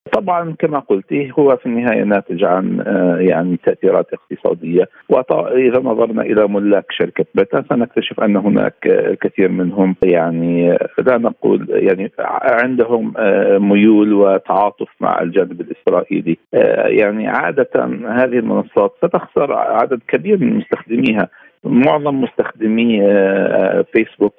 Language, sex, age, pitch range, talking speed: Arabic, male, 50-69, 95-140 Hz, 110 wpm